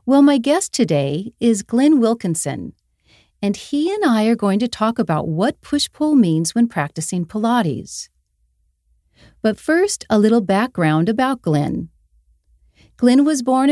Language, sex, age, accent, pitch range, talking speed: English, female, 40-59, American, 155-235 Hz, 145 wpm